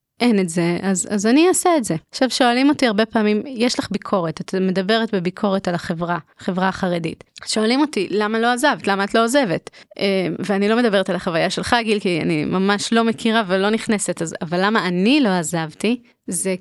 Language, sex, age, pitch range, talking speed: Hebrew, female, 20-39, 185-250 Hz, 190 wpm